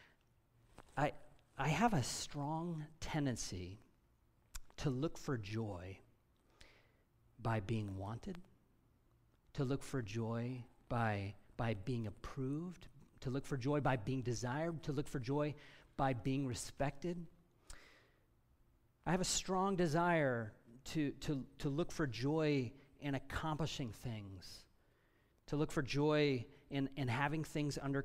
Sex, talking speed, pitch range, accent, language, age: male, 125 wpm, 115-150 Hz, American, English, 40-59